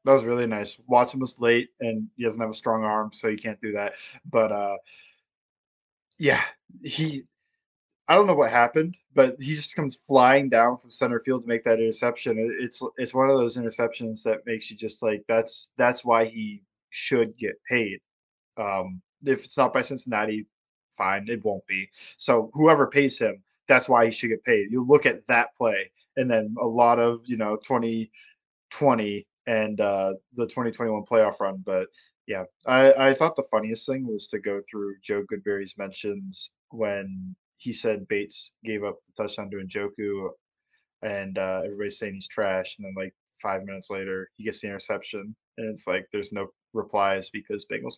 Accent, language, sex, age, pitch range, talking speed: American, English, male, 20-39, 105-135 Hz, 185 wpm